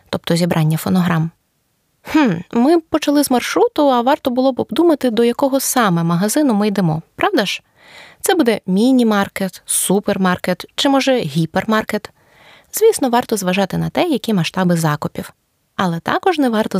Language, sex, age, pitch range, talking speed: Ukrainian, female, 20-39, 180-270 Hz, 145 wpm